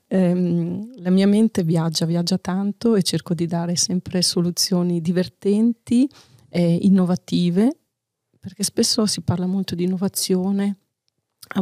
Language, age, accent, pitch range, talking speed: Italian, 40-59, native, 175-220 Hz, 120 wpm